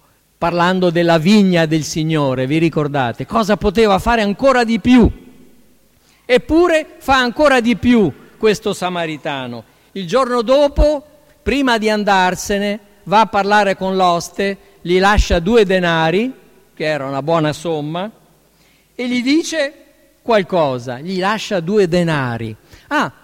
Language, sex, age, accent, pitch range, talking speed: Italian, male, 50-69, native, 160-215 Hz, 125 wpm